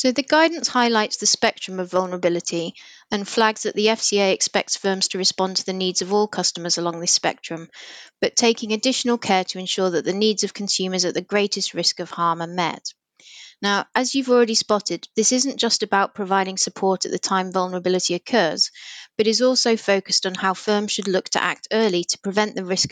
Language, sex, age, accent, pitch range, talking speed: English, female, 30-49, British, 185-220 Hz, 200 wpm